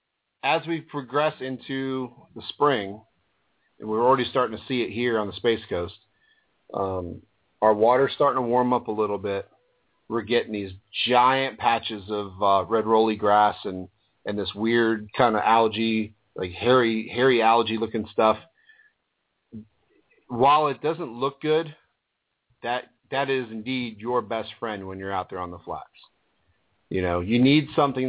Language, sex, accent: English, male, American